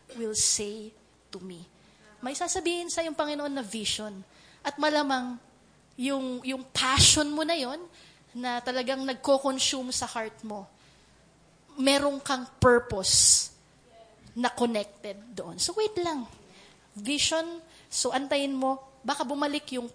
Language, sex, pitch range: English, female, 240-310 Hz